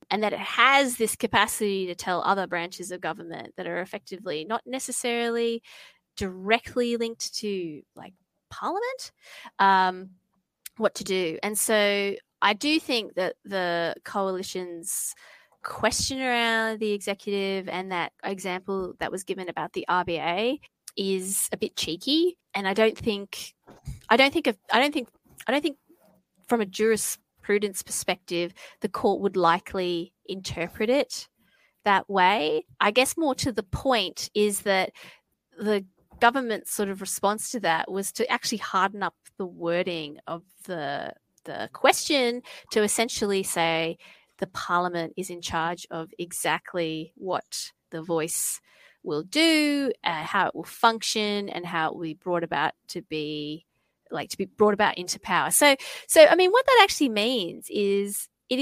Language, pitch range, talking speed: English, 180-235 Hz, 155 wpm